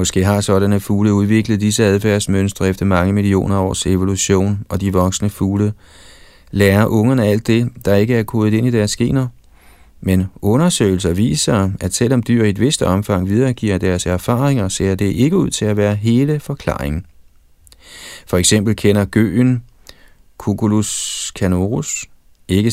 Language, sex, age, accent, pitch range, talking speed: Danish, male, 30-49, native, 95-115 Hz, 150 wpm